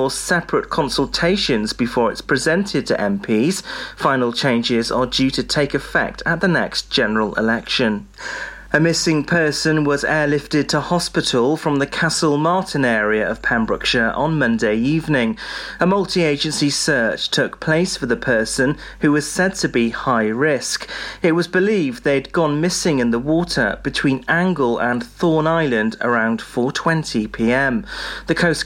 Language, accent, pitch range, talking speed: English, British, 125-165 Hz, 145 wpm